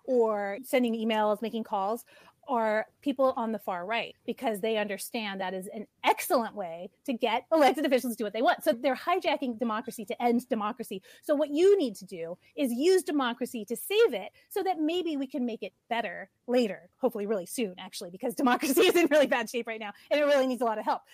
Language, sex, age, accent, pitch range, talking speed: English, female, 30-49, American, 225-285 Hz, 220 wpm